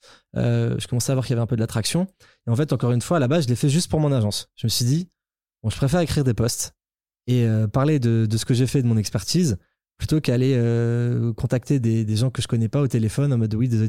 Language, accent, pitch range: French, French, 115-140 Hz